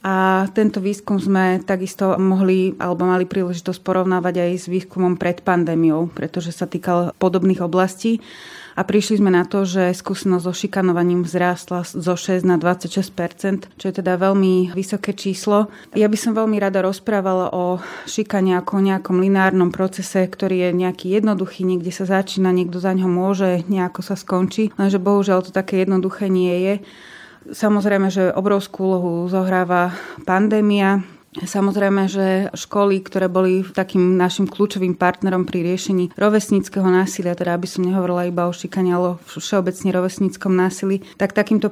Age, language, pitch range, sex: 30-49, Slovak, 180-195 Hz, female